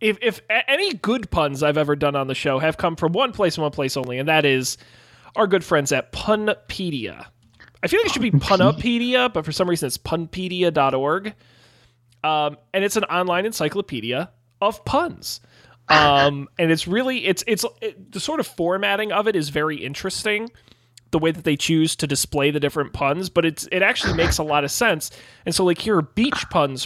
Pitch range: 140-195 Hz